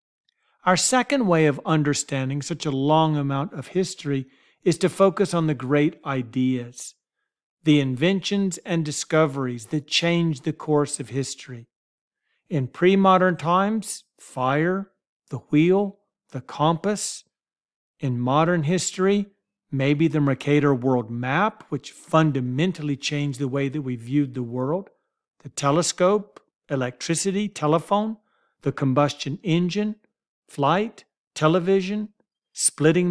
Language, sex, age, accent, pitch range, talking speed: English, male, 40-59, American, 140-180 Hz, 120 wpm